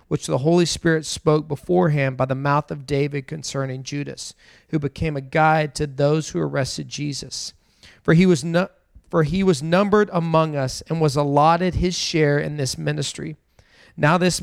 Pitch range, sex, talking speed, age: 135-165 Hz, male, 175 wpm, 40-59